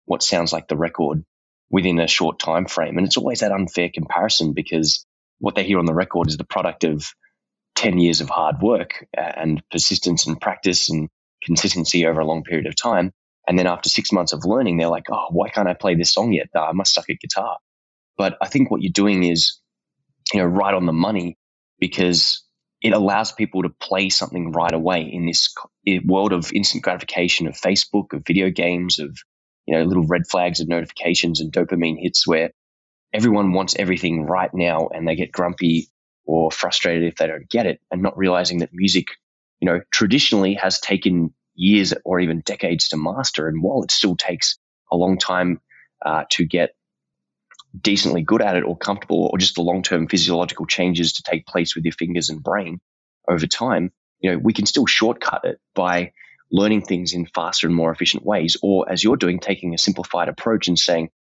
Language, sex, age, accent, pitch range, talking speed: English, male, 10-29, Australian, 80-95 Hz, 200 wpm